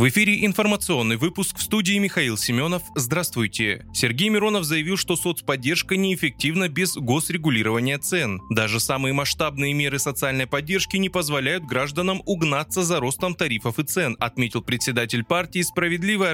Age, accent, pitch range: 20-39, native, 120-175 Hz